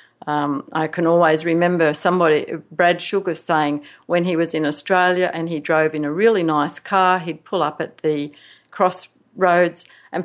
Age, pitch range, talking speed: 50-69, 155-190 Hz, 170 wpm